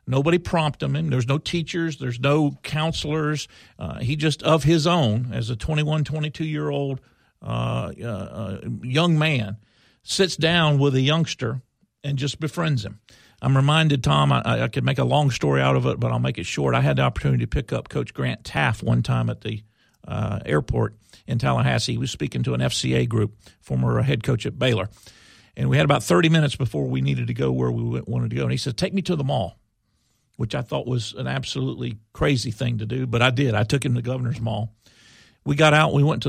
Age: 50-69